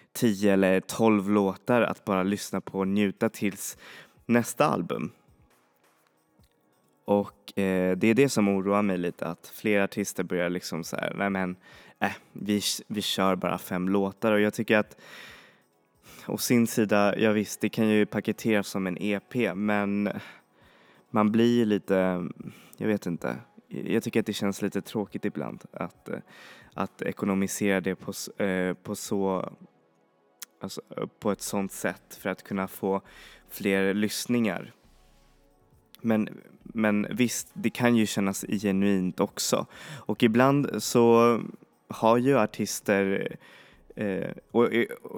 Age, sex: 20-39, male